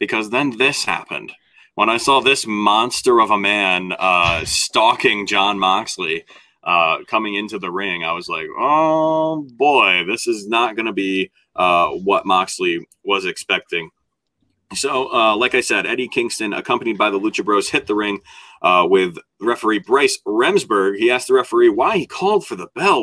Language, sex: English, male